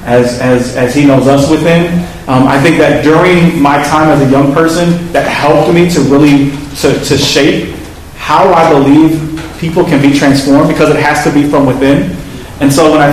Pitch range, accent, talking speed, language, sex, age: 135-165 Hz, American, 200 wpm, English, male, 30-49